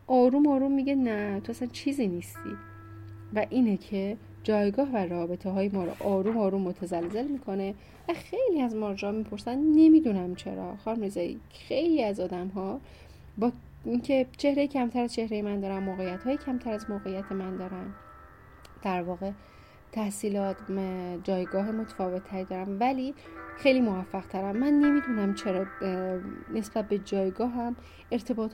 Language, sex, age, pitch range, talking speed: Persian, female, 30-49, 190-245 Hz, 135 wpm